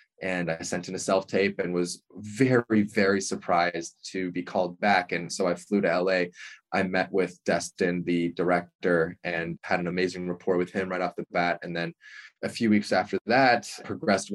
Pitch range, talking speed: 90-105 Hz, 190 wpm